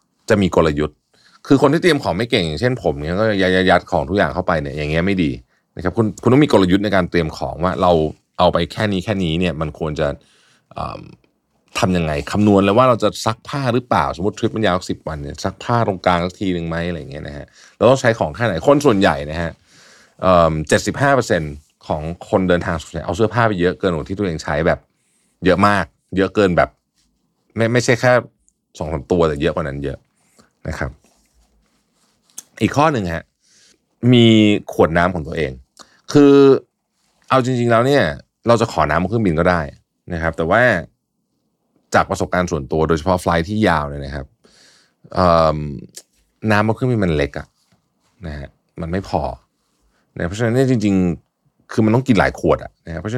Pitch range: 80-115 Hz